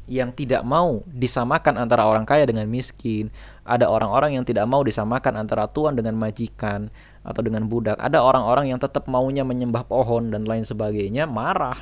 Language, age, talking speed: Indonesian, 20-39, 170 wpm